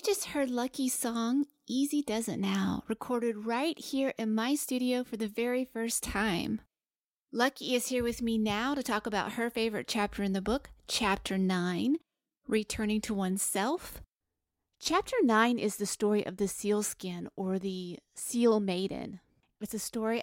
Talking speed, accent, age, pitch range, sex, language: 165 wpm, American, 30-49, 185-230 Hz, female, English